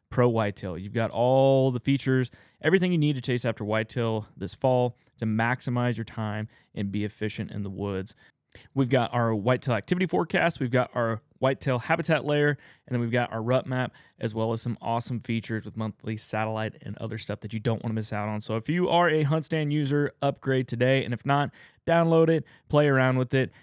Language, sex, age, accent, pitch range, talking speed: English, male, 20-39, American, 115-145 Hz, 215 wpm